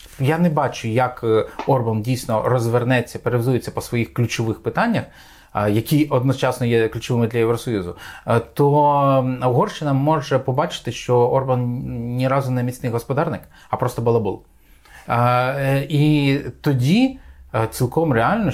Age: 30-49